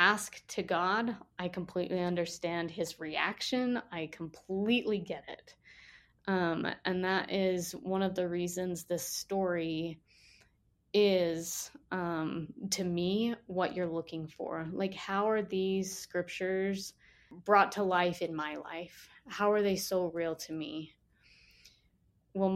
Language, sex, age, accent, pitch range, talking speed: English, female, 20-39, American, 180-260 Hz, 130 wpm